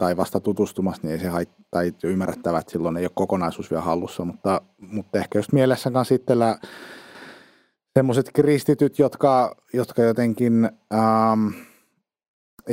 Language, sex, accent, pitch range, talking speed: Finnish, male, native, 100-125 Hz, 130 wpm